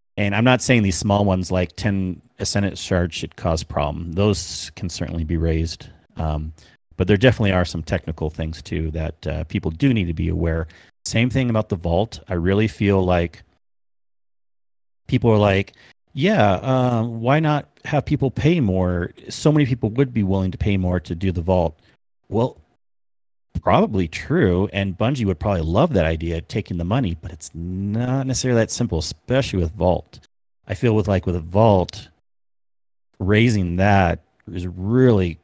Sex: male